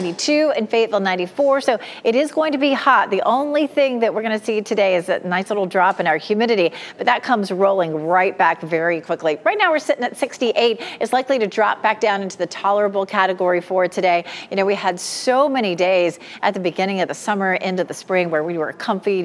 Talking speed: 235 wpm